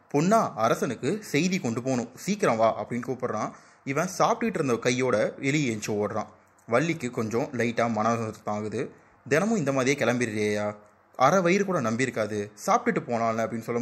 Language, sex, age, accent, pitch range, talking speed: Tamil, male, 20-39, native, 105-130 Hz, 120 wpm